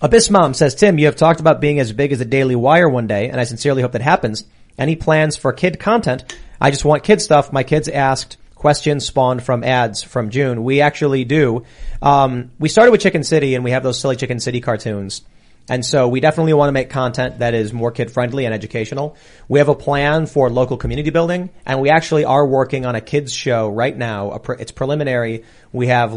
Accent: American